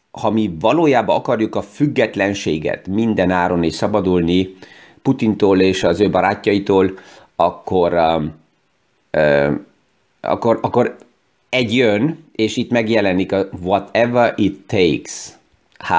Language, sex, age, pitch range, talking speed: Hungarian, male, 30-49, 85-105 Hz, 110 wpm